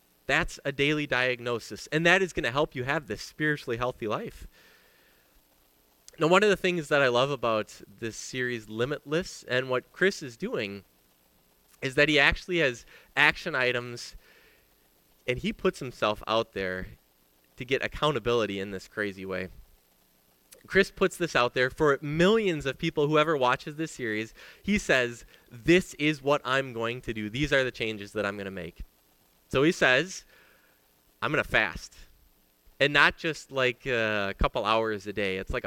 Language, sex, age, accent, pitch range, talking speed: English, male, 20-39, American, 90-135 Hz, 170 wpm